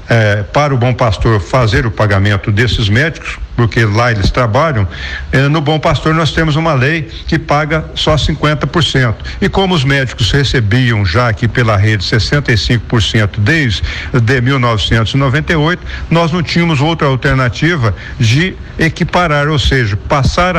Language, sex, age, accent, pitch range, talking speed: Portuguese, male, 60-79, Brazilian, 120-165 Hz, 130 wpm